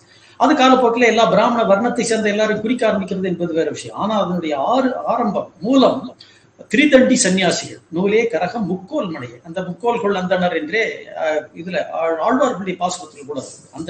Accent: native